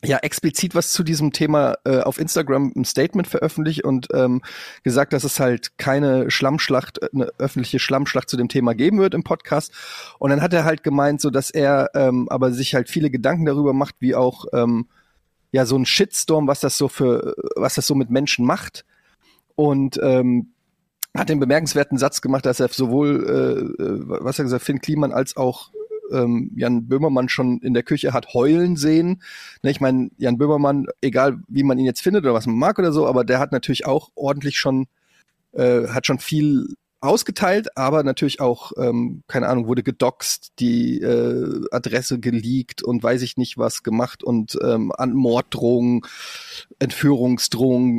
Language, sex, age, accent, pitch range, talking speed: German, male, 30-49, German, 125-150 Hz, 180 wpm